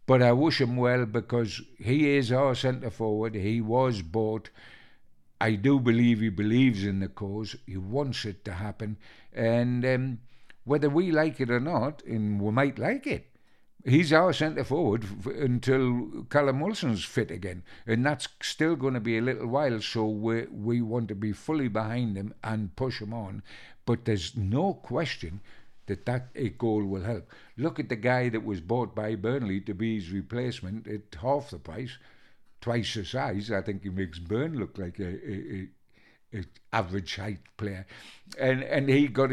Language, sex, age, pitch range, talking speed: English, male, 60-79, 105-130 Hz, 180 wpm